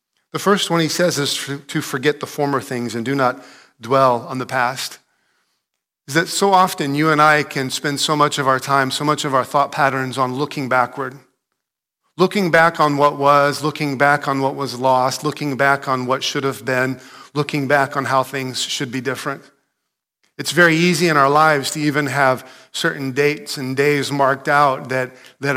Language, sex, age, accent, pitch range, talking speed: English, male, 40-59, American, 130-150 Hz, 195 wpm